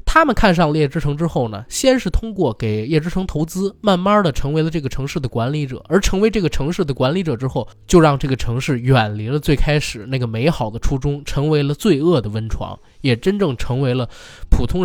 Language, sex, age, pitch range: Chinese, male, 20-39, 125-200 Hz